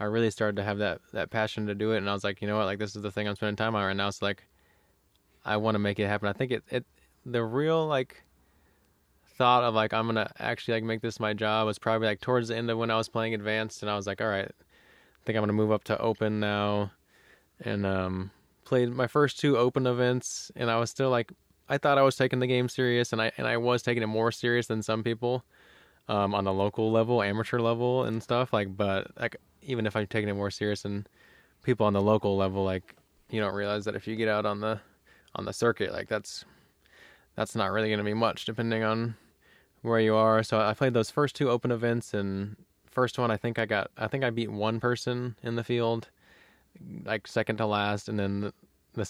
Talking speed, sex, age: 245 wpm, male, 20-39